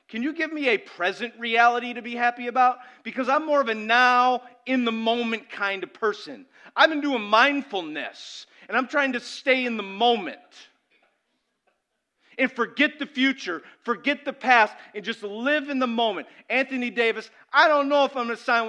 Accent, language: American, English